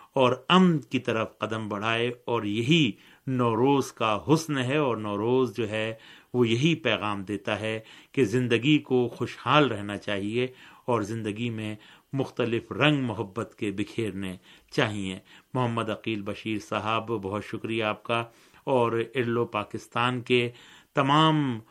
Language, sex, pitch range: Urdu, male, 105-125 Hz